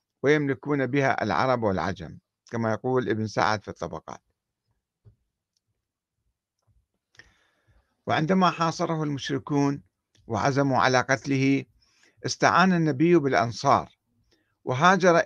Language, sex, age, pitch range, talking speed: Arabic, male, 50-69, 120-175 Hz, 80 wpm